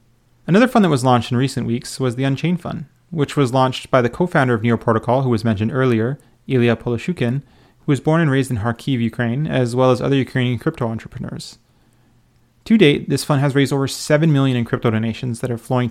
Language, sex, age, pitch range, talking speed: English, male, 30-49, 120-145 Hz, 220 wpm